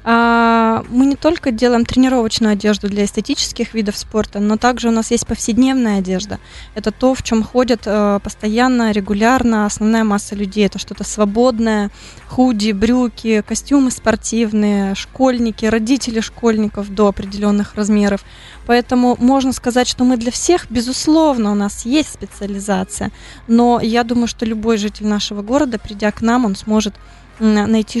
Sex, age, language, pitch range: female, 20-39, Russian, 205-235 Hz